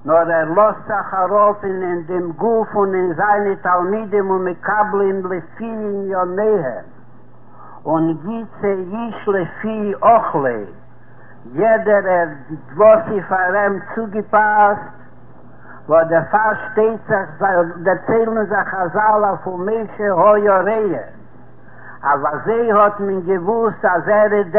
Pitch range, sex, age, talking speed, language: 185-220 Hz, male, 60-79, 95 wpm, Hebrew